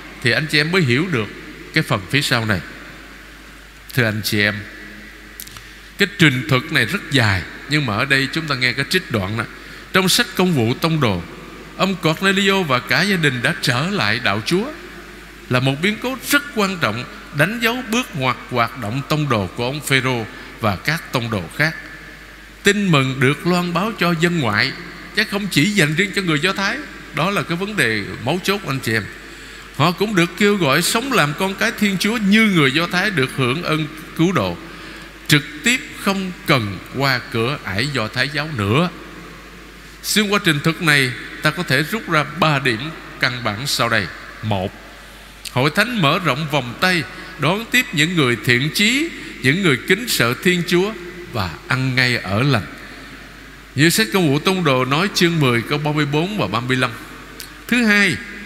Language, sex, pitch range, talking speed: Vietnamese, male, 125-185 Hz, 190 wpm